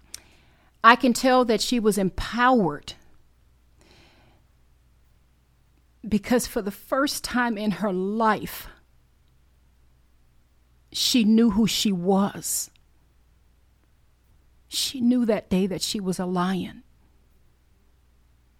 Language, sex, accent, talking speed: English, female, American, 95 wpm